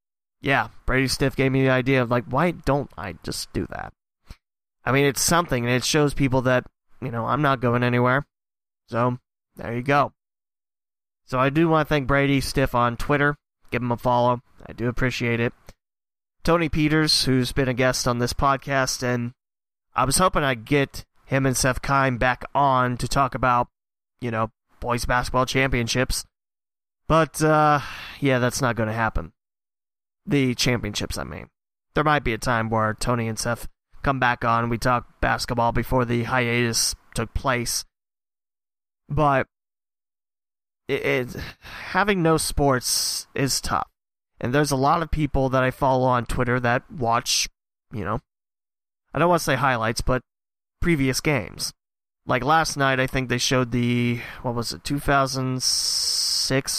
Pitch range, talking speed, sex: 120-140 Hz, 165 wpm, male